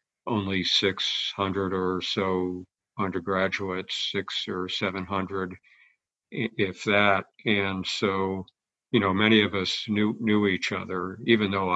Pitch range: 95-120 Hz